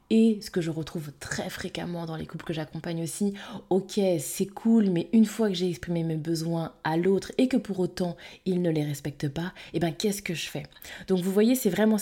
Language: French